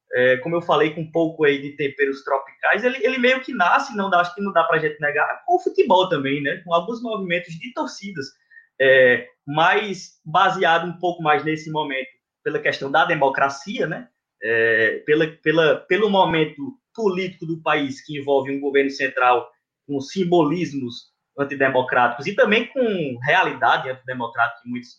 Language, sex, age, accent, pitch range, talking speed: Portuguese, male, 20-39, Brazilian, 145-205 Hz, 170 wpm